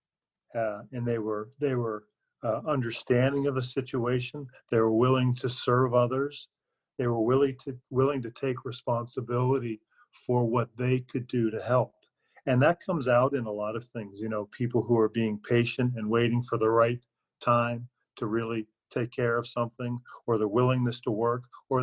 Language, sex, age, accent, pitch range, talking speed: English, male, 40-59, American, 115-130 Hz, 180 wpm